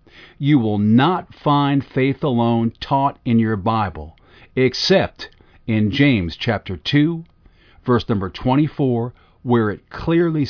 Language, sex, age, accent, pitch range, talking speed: English, male, 50-69, American, 100-135 Hz, 120 wpm